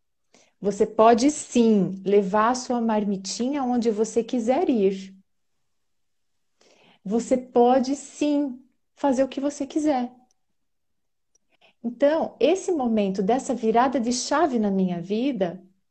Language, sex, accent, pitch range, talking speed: Portuguese, female, Brazilian, 205-260 Hz, 110 wpm